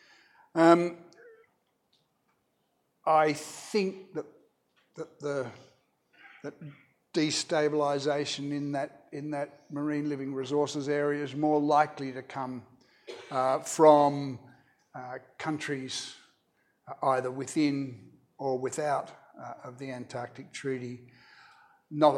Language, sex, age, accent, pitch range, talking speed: English, male, 60-79, Australian, 130-150 Hz, 95 wpm